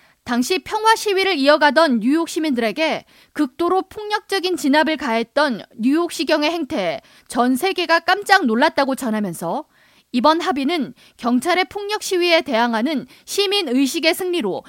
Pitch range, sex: 250-350 Hz, female